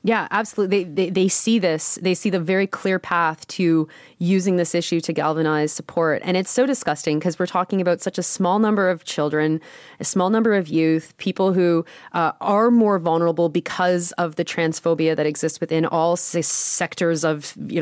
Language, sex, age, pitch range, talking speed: English, female, 20-39, 170-235 Hz, 190 wpm